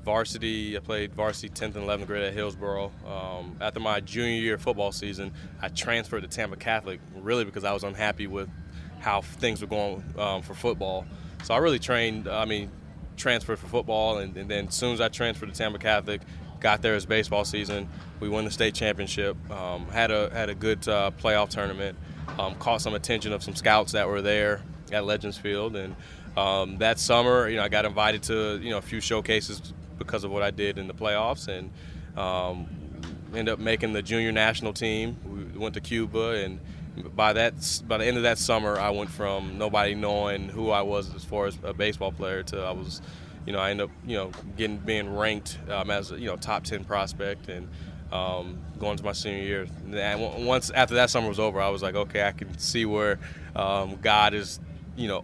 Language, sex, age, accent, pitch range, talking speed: English, male, 20-39, American, 95-110 Hz, 210 wpm